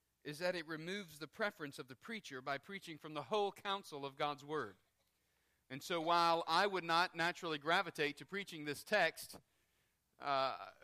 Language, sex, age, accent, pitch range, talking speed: English, male, 40-59, American, 145-195 Hz, 170 wpm